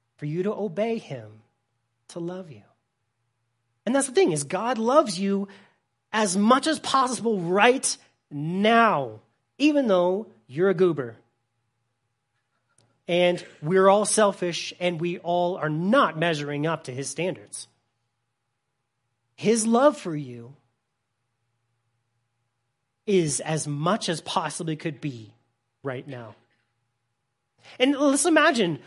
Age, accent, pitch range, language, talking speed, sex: 30-49, American, 120-195 Hz, English, 120 wpm, male